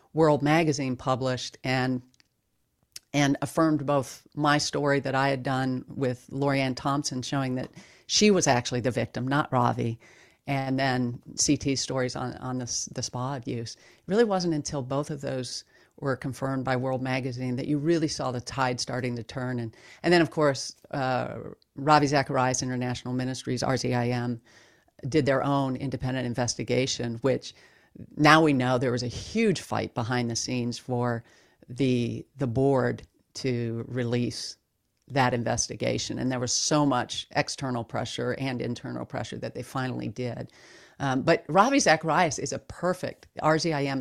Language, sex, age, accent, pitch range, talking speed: English, female, 40-59, American, 125-145 Hz, 155 wpm